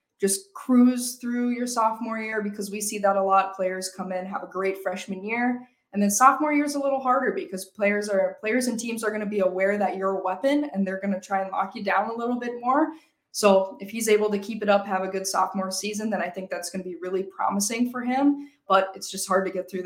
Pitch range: 190-240 Hz